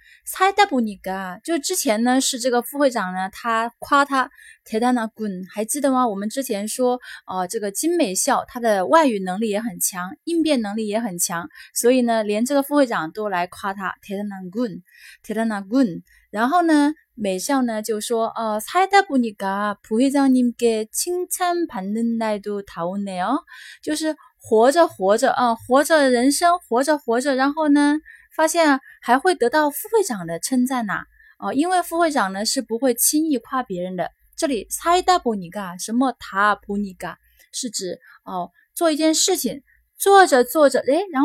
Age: 20-39